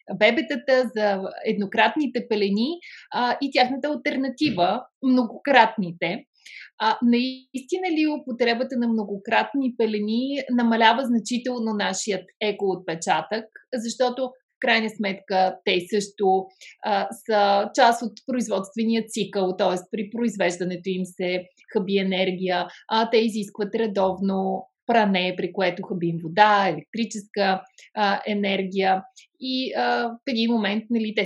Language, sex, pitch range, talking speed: Bulgarian, female, 195-245 Hz, 115 wpm